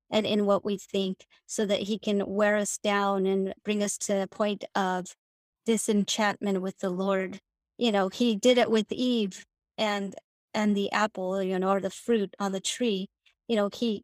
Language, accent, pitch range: English, American, 195-225 Hz